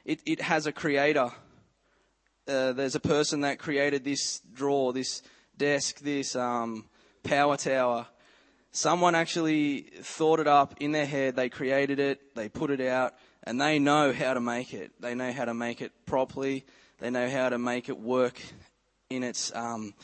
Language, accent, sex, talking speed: English, Australian, male, 175 wpm